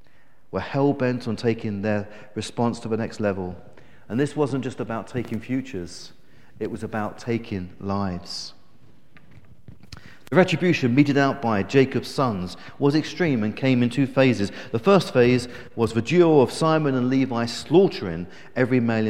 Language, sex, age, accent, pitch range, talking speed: English, male, 40-59, British, 105-145 Hz, 155 wpm